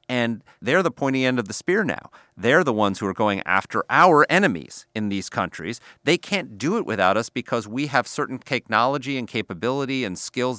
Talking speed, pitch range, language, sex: 205 wpm, 100-125 Hz, English, male